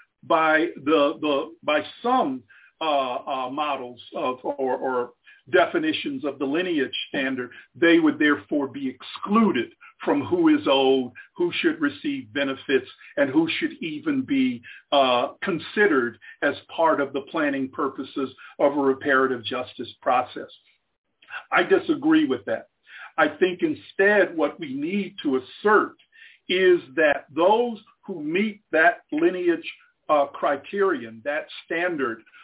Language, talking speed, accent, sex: English, 130 wpm, American, male